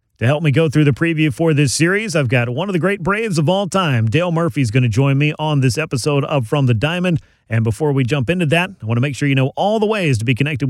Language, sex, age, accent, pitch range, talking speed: English, male, 40-59, American, 125-160 Hz, 295 wpm